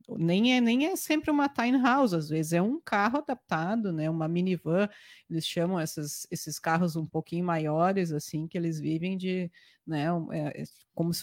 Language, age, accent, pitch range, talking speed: Portuguese, 30-49, Brazilian, 165-215 Hz, 180 wpm